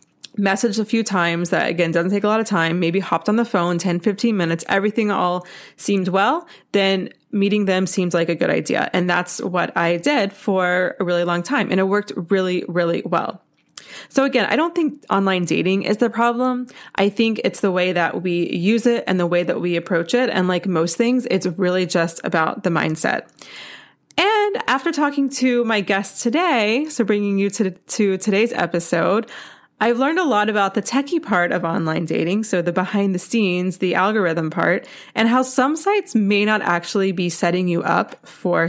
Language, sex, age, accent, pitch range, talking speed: English, female, 20-39, American, 175-225 Hz, 200 wpm